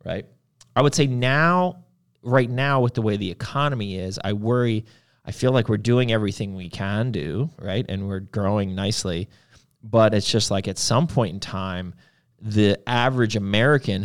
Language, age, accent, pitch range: English, 30-49, American, 100-130 Hz